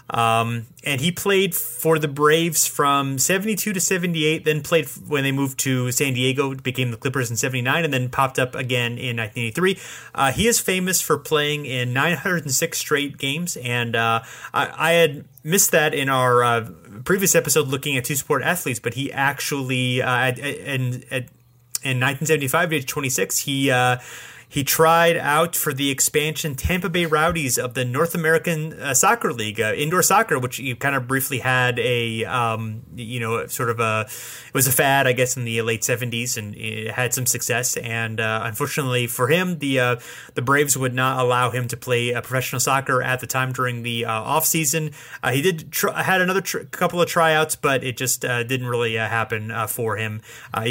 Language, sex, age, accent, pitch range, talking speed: English, male, 30-49, American, 120-155 Hz, 190 wpm